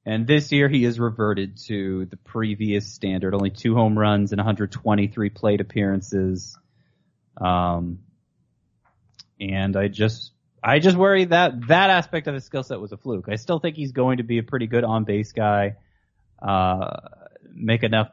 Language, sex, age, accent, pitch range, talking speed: English, male, 20-39, American, 100-125 Hz, 165 wpm